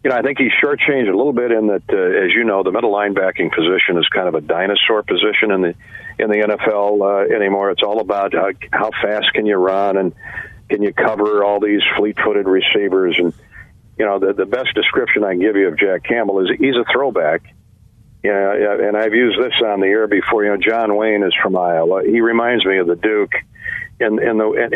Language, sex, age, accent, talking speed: English, male, 50-69, American, 230 wpm